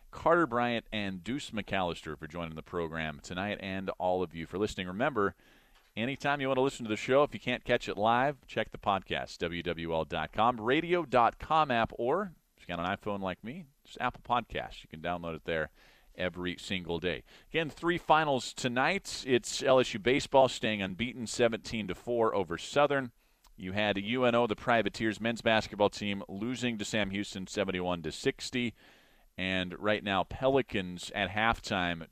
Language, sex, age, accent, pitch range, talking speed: English, male, 40-59, American, 95-125 Hz, 165 wpm